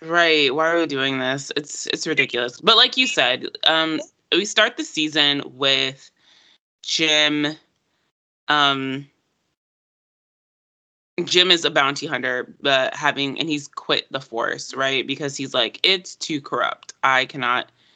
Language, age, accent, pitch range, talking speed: English, 20-39, American, 130-155 Hz, 140 wpm